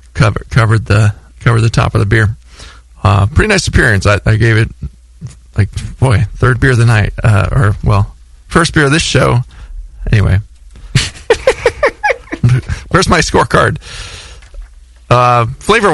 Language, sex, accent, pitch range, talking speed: English, male, American, 100-125 Hz, 145 wpm